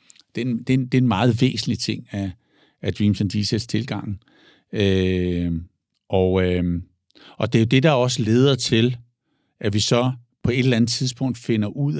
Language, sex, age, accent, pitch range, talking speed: Danish, male, 50-69, native, 105-130 Hz, 170 wpm